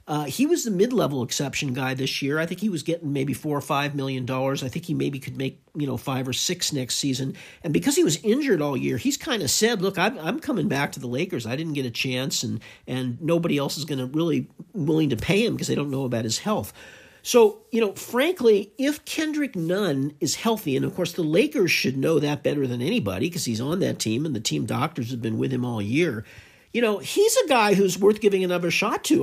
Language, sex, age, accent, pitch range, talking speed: English, male, 50-69, American, 140-210 Hz, 250 wpm